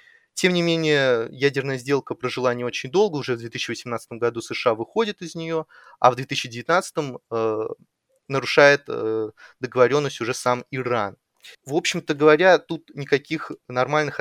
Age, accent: 20-39, native